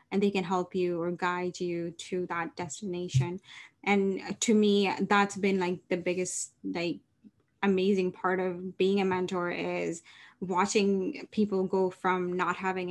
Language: English